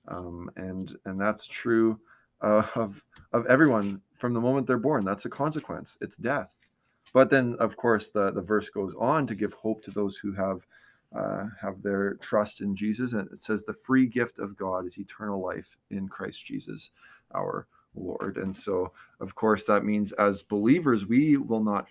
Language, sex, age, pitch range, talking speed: English, male, 20-39, 100-120 Hz, 185 wpm